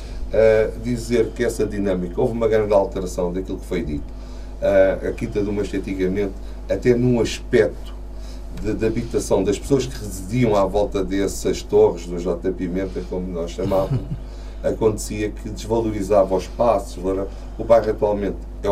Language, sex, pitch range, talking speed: Portuguese, male, 95-115 Hz, 145 wpm